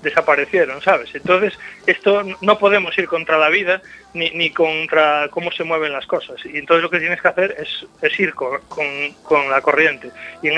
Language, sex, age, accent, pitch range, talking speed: Spanish, male, 30-49, Spanish, 155-180 Hz, 200 wpm